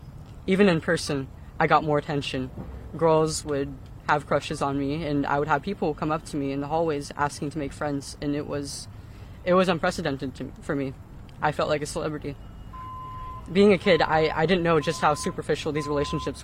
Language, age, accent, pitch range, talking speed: English, 20-39, American, 130-165 Hz, 205 wpm